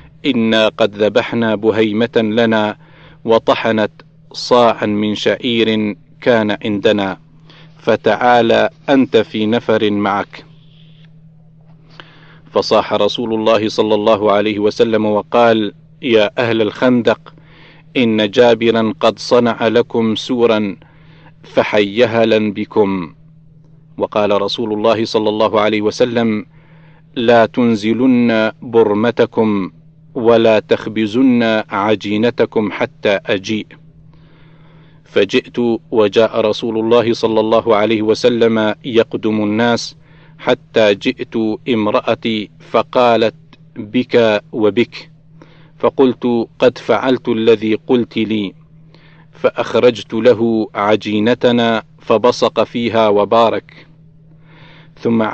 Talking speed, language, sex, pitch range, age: 85 wpm, Arabic, male, 110-155 Hz, 40-59